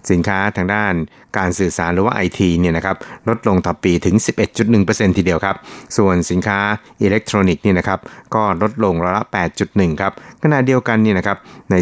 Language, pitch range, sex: Thai, 90-105 Hz, male